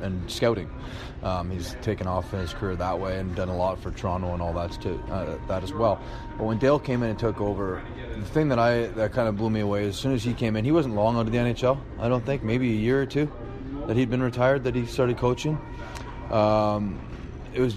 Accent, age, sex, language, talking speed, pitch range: American, 30-49, male, English, 255 wpm, 95-120 Hz